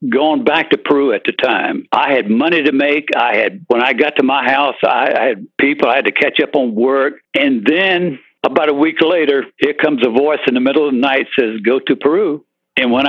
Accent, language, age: American, English, 60-79